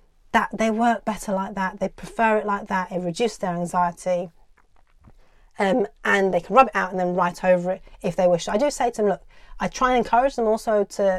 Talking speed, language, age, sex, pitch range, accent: 230 wpm, English, 30-49, female, 185-220 Hz, British